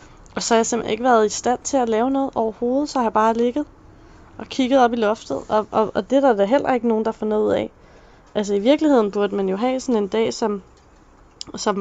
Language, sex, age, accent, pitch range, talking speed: Danish, female, 20-39, native, 210-240 Hz, 260 wpm